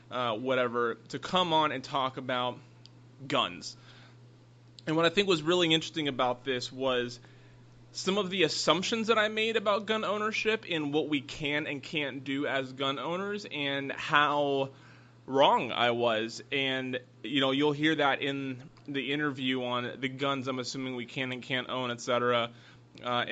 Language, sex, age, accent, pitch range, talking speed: English, male, 20-39, American, 130-165 Hz, 170 wpm